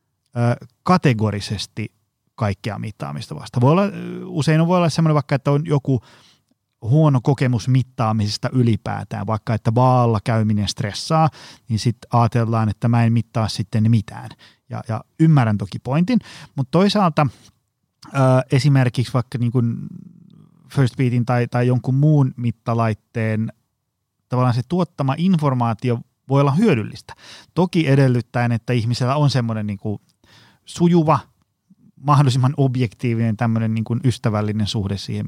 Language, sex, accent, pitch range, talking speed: Finnish, male, native, 115-150 Hz, 120 wpm